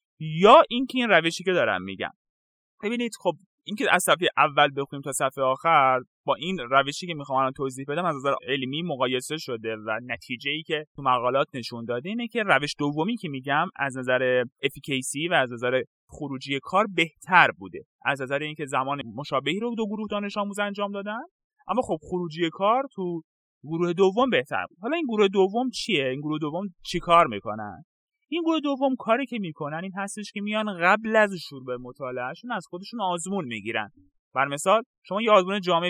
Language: Persian